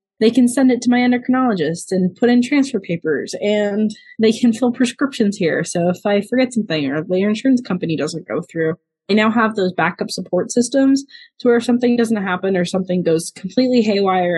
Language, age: English, 20-39